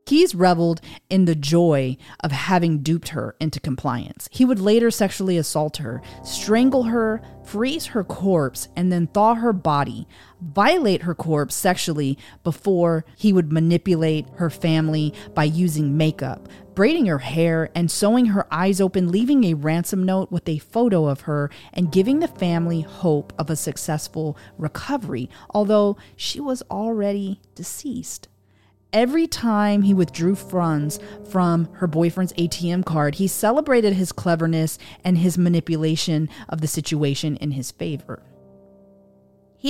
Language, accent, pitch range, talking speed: English, American, 150-200 Hz, 145 wpm